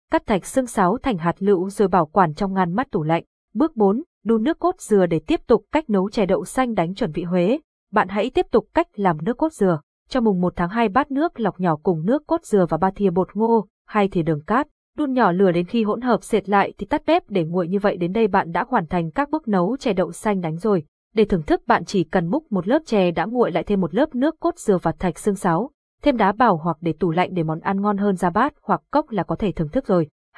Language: Vietnamese